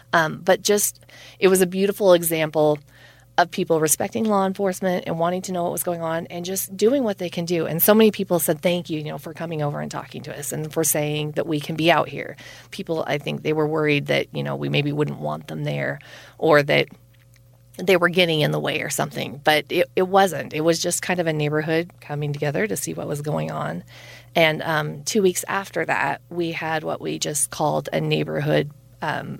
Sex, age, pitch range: female, 30-49, 130-180 Hz